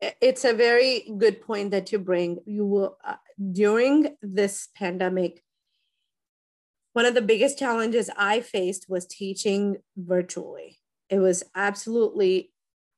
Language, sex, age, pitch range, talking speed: English, female, 30-49, 175-215 Hz, 125 wpm